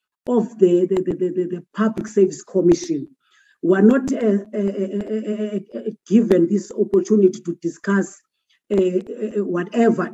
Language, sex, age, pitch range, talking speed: English, female, 50-69, 185-230 Hz, 135 wpm